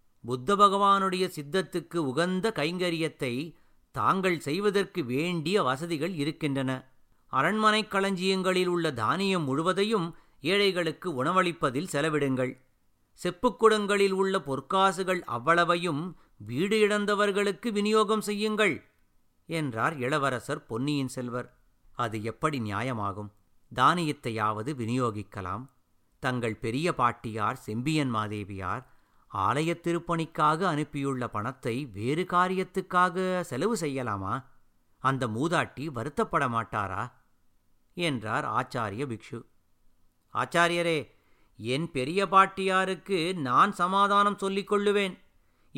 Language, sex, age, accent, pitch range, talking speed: Tamil, male, 50-69, native, 125-185 Hz, 80 wpm